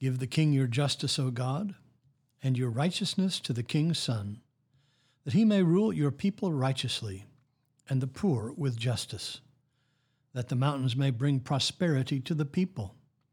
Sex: male